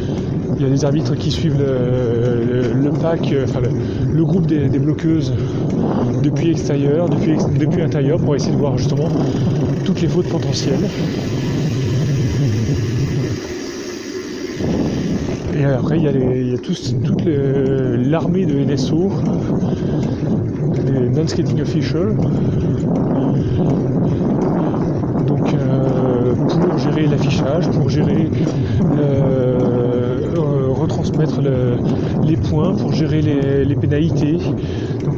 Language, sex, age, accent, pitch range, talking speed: French, male, 30-49, French, 125-155 Hz, 120 wpm